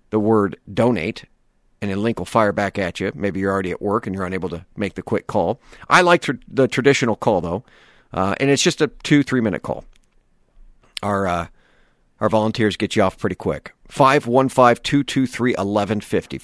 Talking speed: 175 wpm